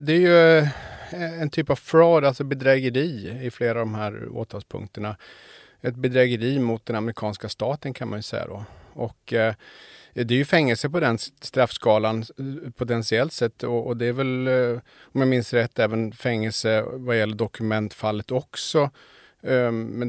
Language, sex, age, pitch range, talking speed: Swedish, male, 30-49, 115-130 Hz, 150 wpm